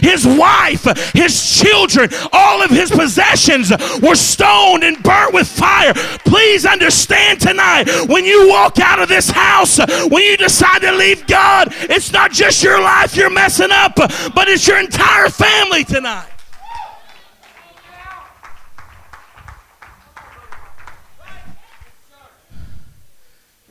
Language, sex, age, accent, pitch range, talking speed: English, male, 40-59, American, 225-285 Hz, 110 wpm